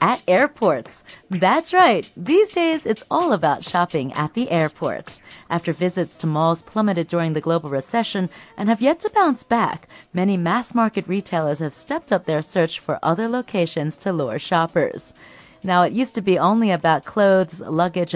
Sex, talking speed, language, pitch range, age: female, 170 wpm, English, 165-230 Hz, 30-49